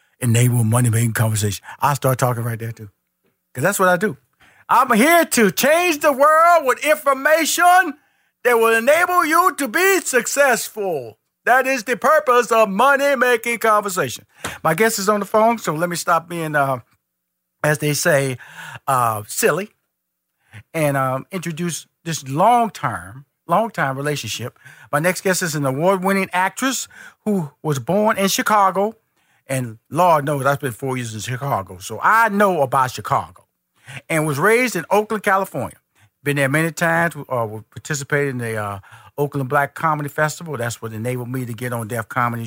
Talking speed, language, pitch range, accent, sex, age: 160 wpm, English, 125-205 Hz, American, male, 50-69